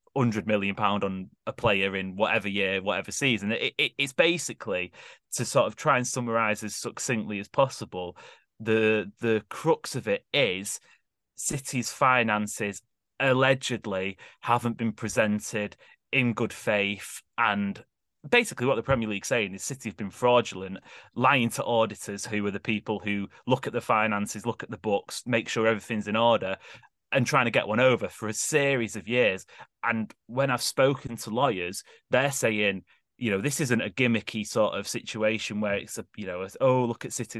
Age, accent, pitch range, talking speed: 30-49, British, 105-125 Hz, 180 wpm